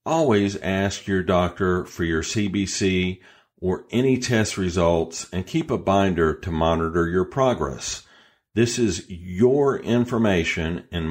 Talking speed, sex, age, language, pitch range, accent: 130 wpm, male, 50-69, English, 85-115 Hz, American